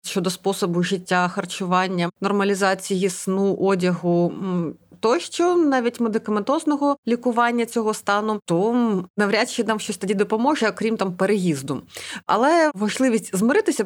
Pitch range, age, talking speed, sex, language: 190-235 Hz, 30-49, 115 wpm, female, Ukrainian